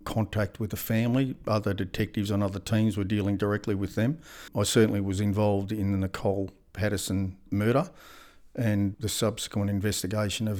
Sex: male